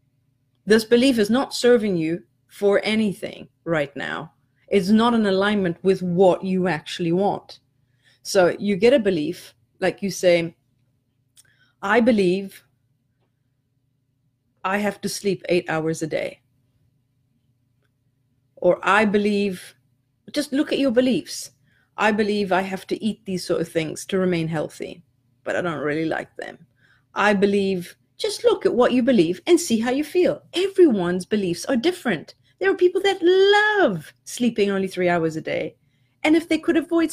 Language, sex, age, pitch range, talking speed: English, female, 30-49, 165-255 Hz, 155 wpm